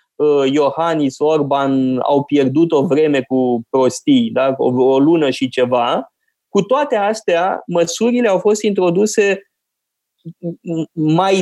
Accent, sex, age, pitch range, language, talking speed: native, male, 20-39, 145-215 Hz, Romanian, 110 wpm